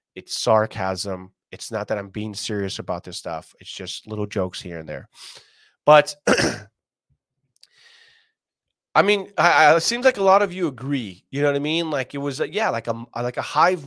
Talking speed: 200 wpm